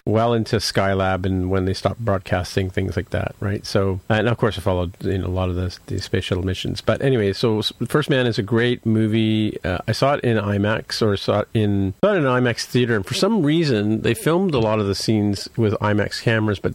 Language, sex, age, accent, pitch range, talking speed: English, male, 40-59, American, 95-115 Hz, 245 wpm